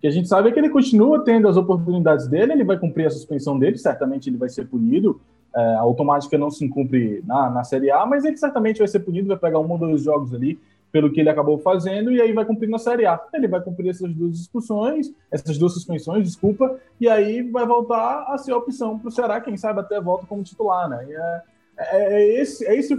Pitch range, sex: 165-235 Hz, male